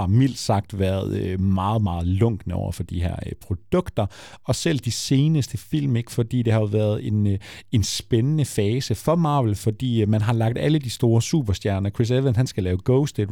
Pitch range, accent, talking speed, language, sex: 105-140 Hz, native, 185 wpm, Danish, male